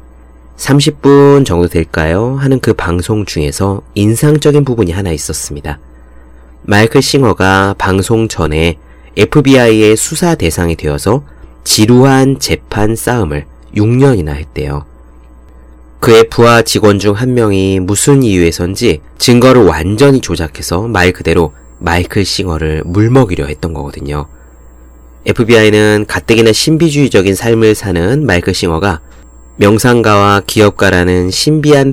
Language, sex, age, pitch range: Korean, male, 30-49, 75-115 Hz